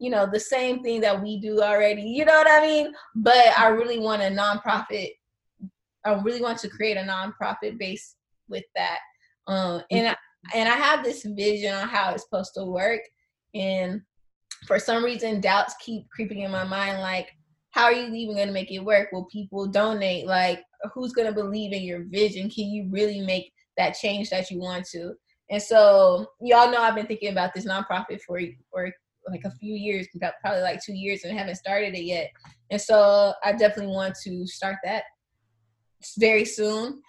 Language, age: English, 20-39